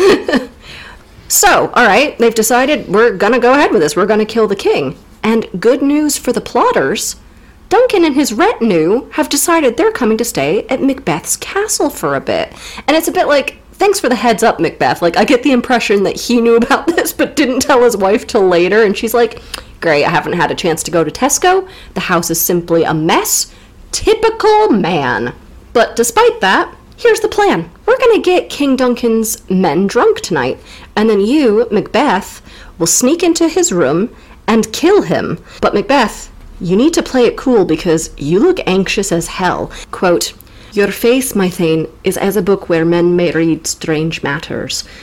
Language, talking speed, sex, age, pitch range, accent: English, 190 wpm, female, 40-59, 175-295 Hz, American